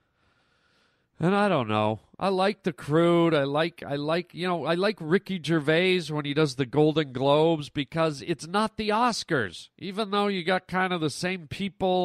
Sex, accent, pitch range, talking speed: male, American, 130-180 Hz, 190 wpm